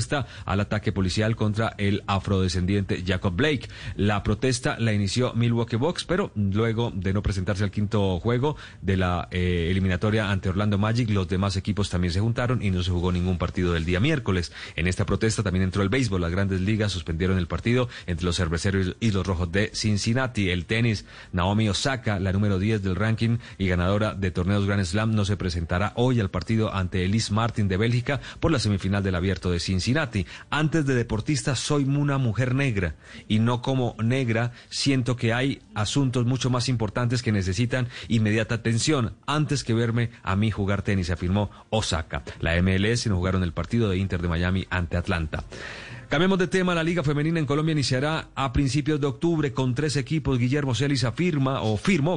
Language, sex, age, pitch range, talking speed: Spanish, male, 30-49, 95-125 Hz, 185 wpm